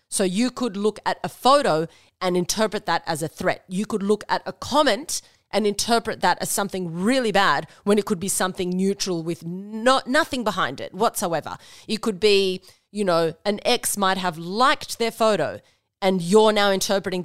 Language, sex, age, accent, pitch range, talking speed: English, female, 30-49, Australian, 180-215 Hz, 190 wpm